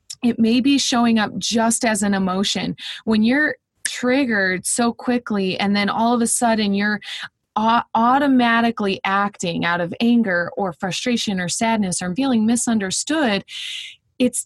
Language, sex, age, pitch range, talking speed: English, female, 20-39, 185-240 Hz, 140 wpm